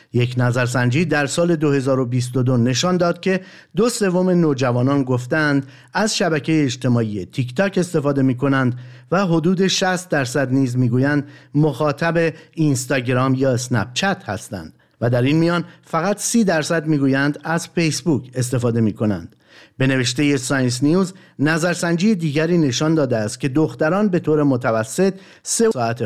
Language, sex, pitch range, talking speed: Persian, male, 130-170 Hz, 140 wpm